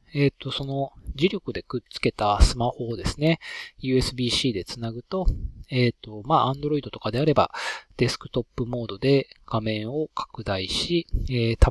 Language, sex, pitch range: Japanese, male, 110-145 Hz